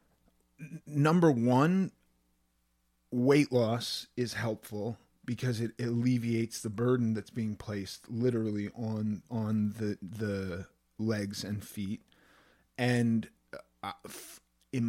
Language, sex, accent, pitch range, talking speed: English, male, American, 100-125 Hz, 95 wpm